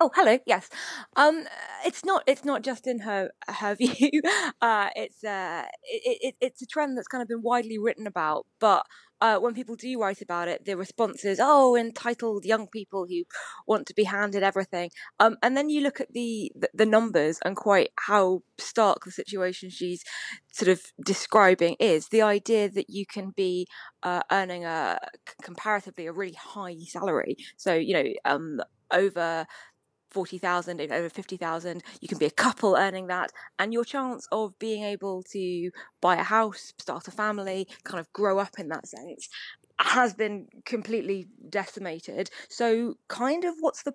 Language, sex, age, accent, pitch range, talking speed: English, female, 20-39, British, 185-240 Hz, 175 wpm